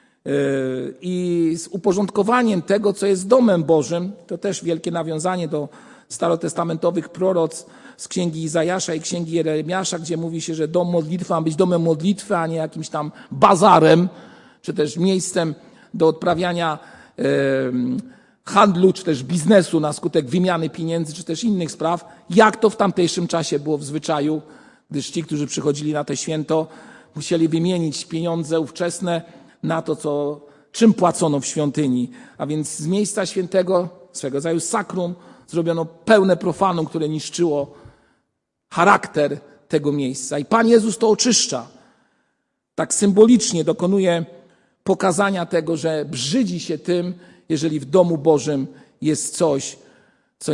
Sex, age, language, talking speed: male, 50-69, Polish, 135 wpm